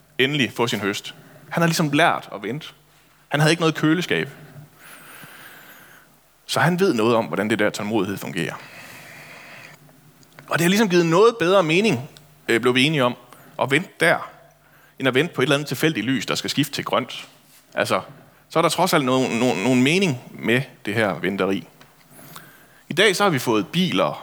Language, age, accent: Danish, 30-49, native